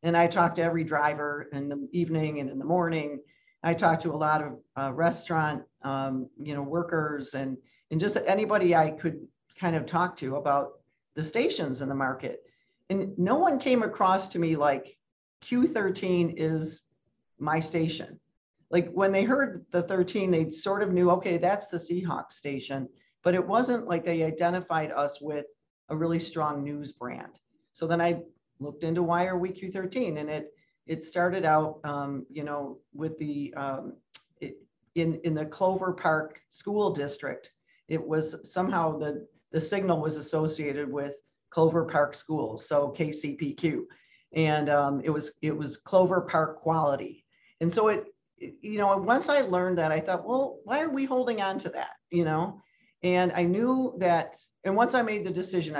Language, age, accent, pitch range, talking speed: English, 40-59, American, 150-185 Hz, 175 wpm